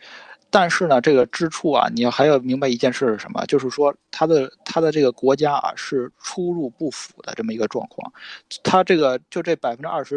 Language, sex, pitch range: Chinese, male, 130-165 Hz